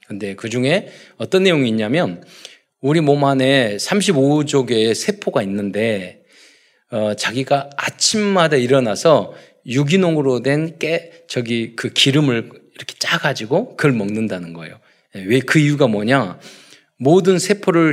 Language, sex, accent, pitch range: Korean, male, native, 115-165 Hz